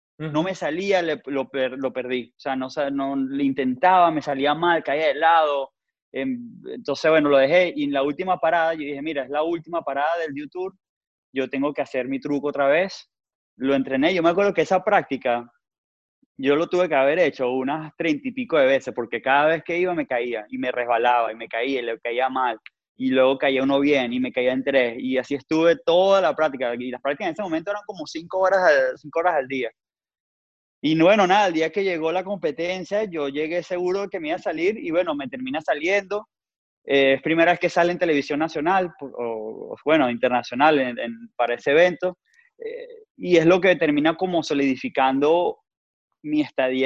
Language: Spanish